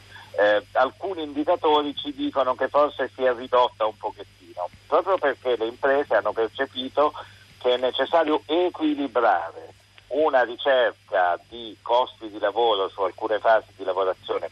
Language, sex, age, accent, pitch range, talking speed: Italian, male, 50-69, native, 105-140 Hz, 125 wpm